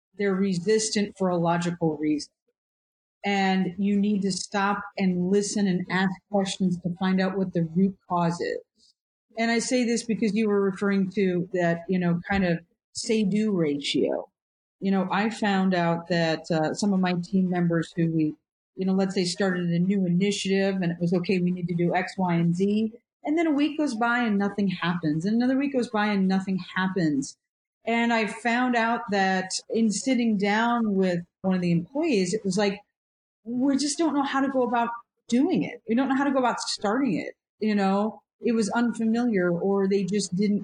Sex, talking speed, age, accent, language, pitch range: female, 200 wpm, 40-59, American, English, 185-230 Hz